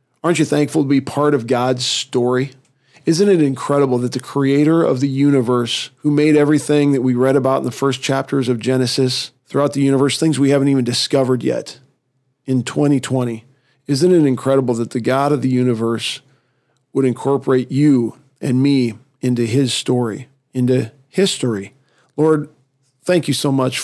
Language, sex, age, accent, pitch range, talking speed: English, male, 40-59, American, 125-140 Hz, 165 wpm